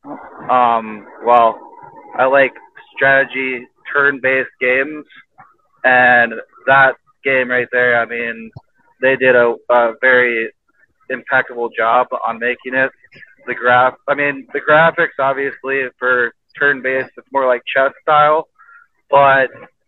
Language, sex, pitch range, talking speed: English, male, 120-135 Hz, 125 wpm